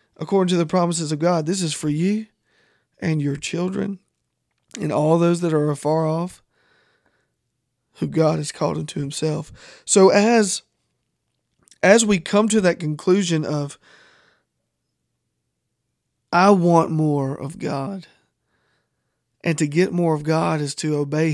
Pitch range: 150-175 Hz